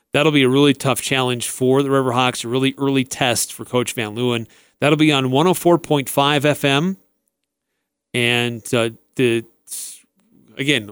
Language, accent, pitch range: English, American, 130-155 Hz